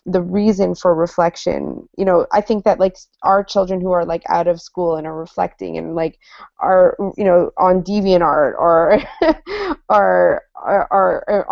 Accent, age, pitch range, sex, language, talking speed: American, 20-39, 180-200 Hz, female, English, 175 wpm